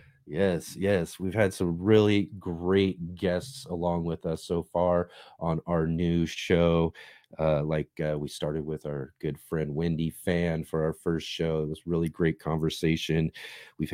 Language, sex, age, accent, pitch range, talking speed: English, male, 40-59, American, 80-90 Hz, 165 wpm